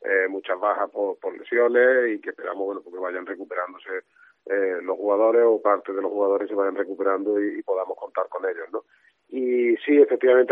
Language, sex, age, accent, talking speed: Spanish, male, 40-59, Spanish, 195 wpm